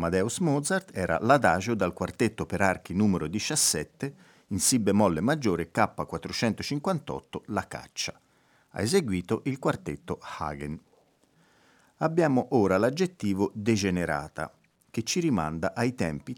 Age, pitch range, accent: 40-59, 95-130 Hz, native